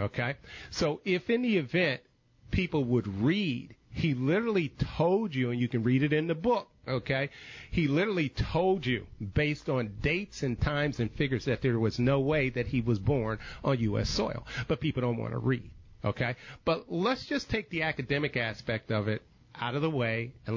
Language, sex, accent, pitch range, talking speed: English, male, American, 115-150 Hz, 195 wpm